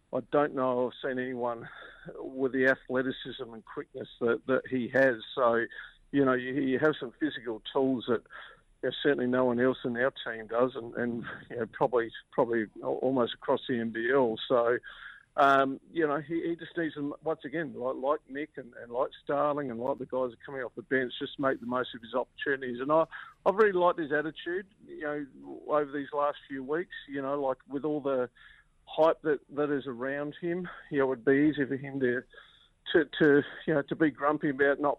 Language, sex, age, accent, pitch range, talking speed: English, male, 50-69, Australian, 125-145 Hz, 210 wpm